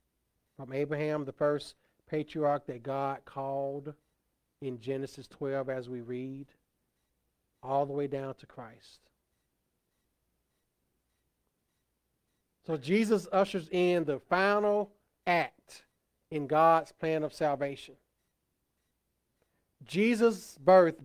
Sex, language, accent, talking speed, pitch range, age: male, English, American, 95 wpm, 135-170 Hz, 40-59